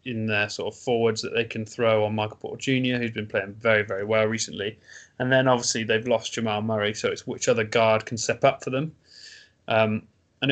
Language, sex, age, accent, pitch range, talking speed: English, male, 20-39, British, 105-130 Hz, 220 wpm